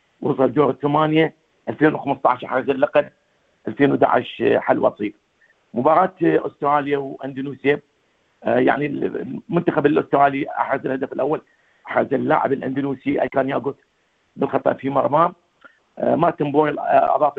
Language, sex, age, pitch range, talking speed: Arabic, male, 50-69, 140-155 Hz, 105 wpm